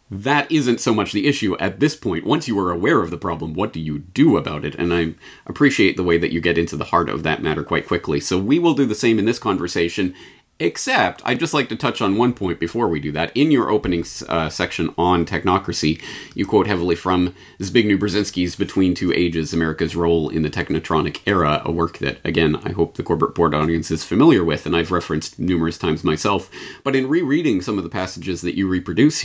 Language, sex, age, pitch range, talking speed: English, male, 30-49, 85-105 Hz, 230 wpm